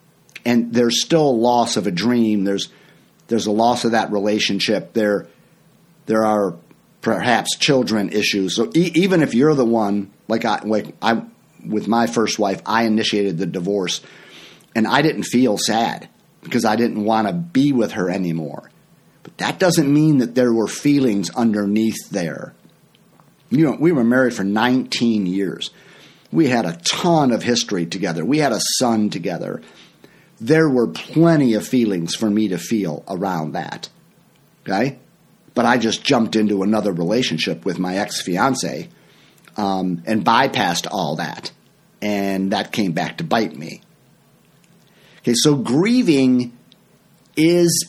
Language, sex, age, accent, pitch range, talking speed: English, male, 50-69, American, 105-140 Hz, 155 wpm